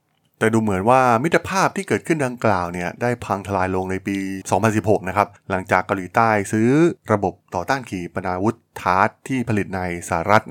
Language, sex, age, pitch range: Thai, male, 20-39, 95-125 Hz